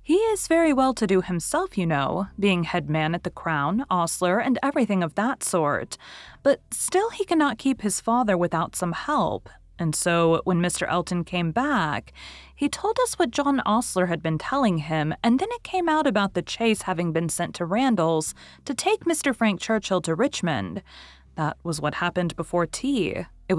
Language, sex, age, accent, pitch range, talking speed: English, female, 30-49, American, 165-250 Hz, 185 wpm